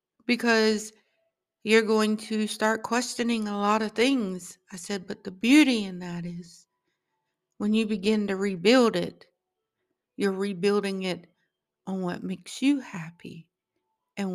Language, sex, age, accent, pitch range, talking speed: English, female, 50-69, American, 180-220 Hz, 140 wpm